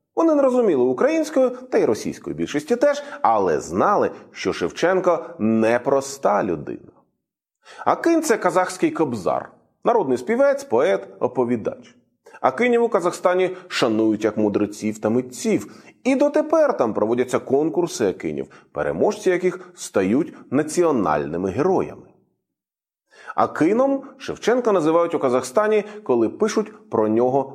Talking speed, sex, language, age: 115 wpm, male, English, 30-49